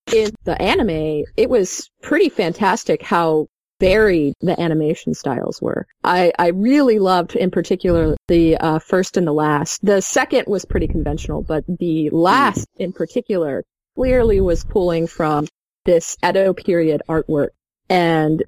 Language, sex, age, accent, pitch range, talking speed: English, female, 30-49, American, 155-200 Hz, 145 wpm